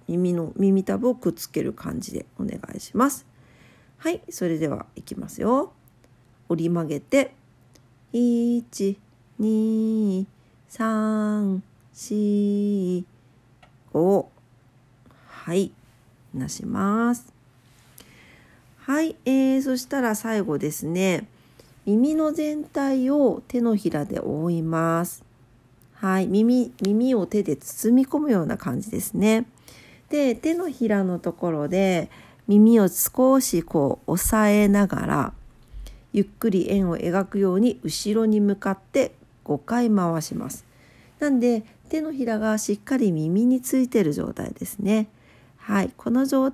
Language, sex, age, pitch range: Japanese, female, 50-69, 160-235 Hz